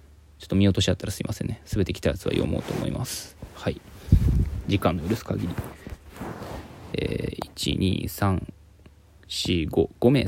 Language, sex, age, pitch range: Japanese, male, 20-39, 80-95 Hz